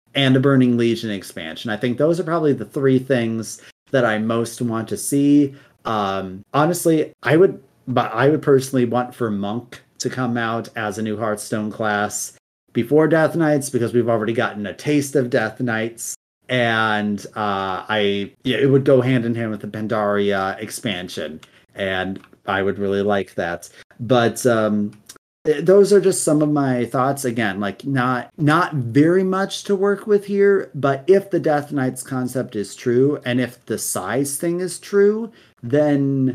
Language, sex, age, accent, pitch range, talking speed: English, male, 30-49, American, 110-140 Hz, 175 wpm